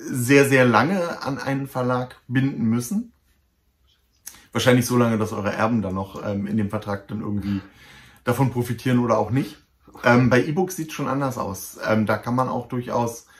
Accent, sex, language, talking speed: German, male, German, 180 wpm